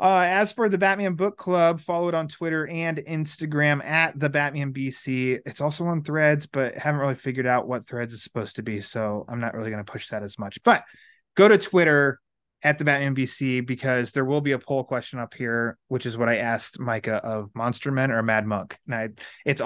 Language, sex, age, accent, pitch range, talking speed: English, male, 20-39, American, 120-150 Hz, 225 wpm